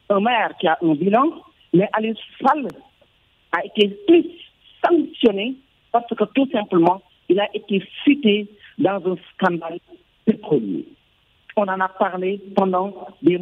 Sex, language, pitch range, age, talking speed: male, French, 180-245 Hz, 50-69, 145 wpm